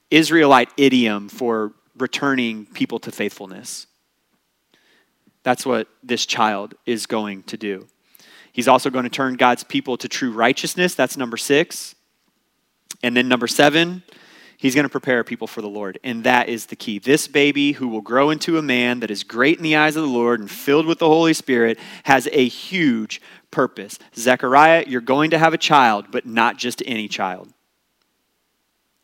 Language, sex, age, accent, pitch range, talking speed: English, male, 30-49, American, 120-165 Hz, 175 wpm